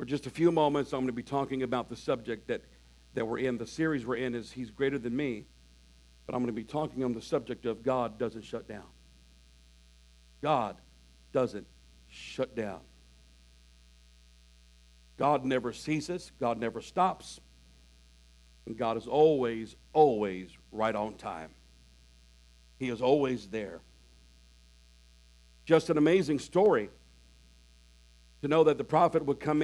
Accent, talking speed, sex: American, 150 wpm, male